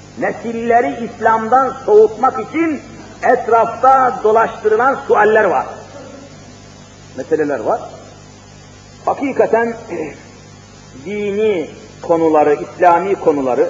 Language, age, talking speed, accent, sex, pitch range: Turkish, 50-69, 65 wpm, native, male, 180-265 Hz